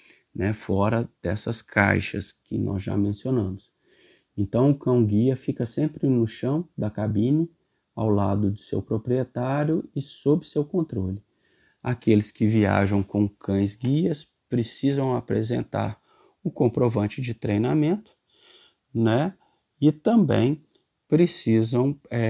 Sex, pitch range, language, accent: male, 95-120 Hz, Portuguese, Brazilian